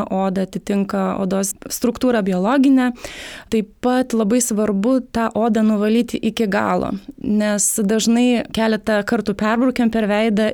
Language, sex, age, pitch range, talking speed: English, female, 20-39, 195-230 Hz, 120 wpm